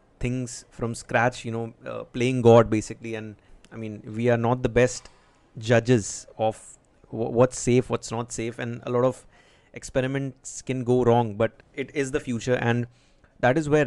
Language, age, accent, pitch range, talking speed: English, 30-49, Indian, 110-130 Hz, 180 wpm